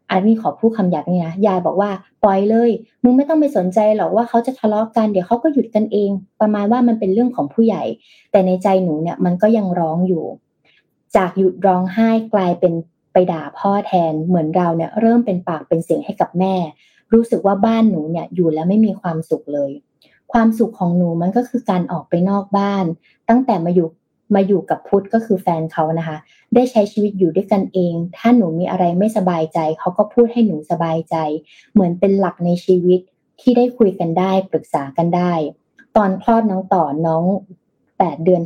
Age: 20-39